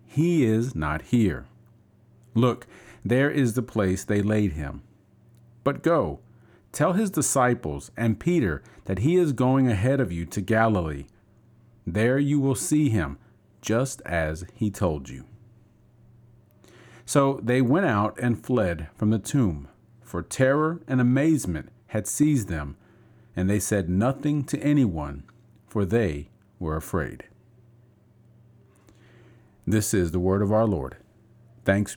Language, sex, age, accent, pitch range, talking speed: English, male, 40-59, American, 100-130 Hz, 135 wpm